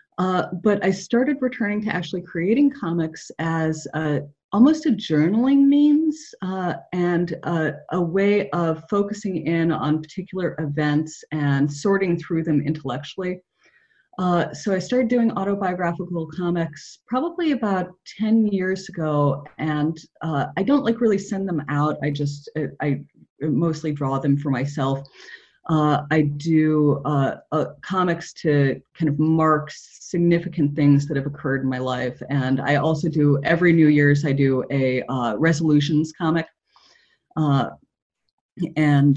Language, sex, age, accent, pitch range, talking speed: English, female, 30-49, American, 145-185 Hz, 140 wpm